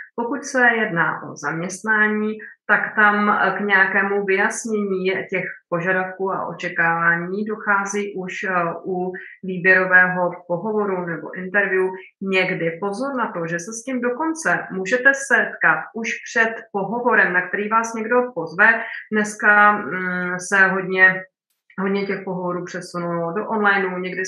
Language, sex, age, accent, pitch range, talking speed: English, female, 30-49, Czech, 185-220 Hz, 125 wpm